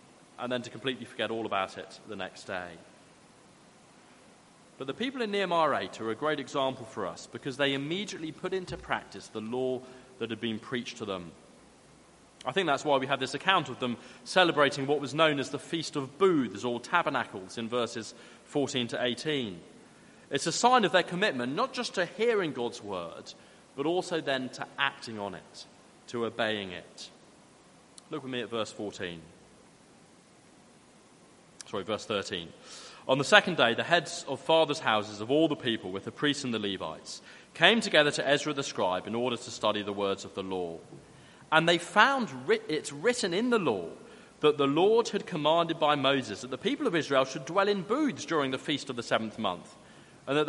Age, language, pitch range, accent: 30-49, English, 115-160 Hz, British